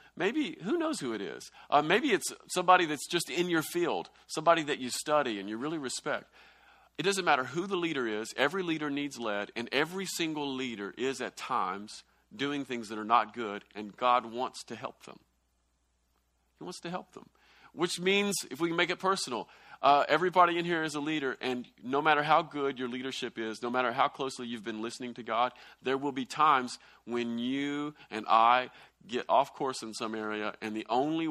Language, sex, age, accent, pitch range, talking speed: English, male, 40-59, American, 100-150 Hz, 205 wpm